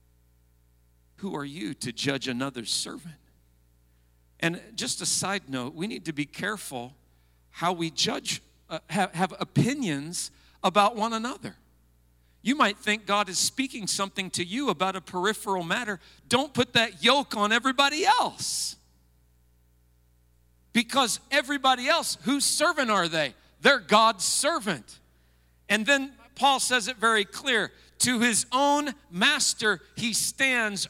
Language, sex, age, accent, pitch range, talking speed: English, male, 50-69, American, 155-250 Hz, 135 wpm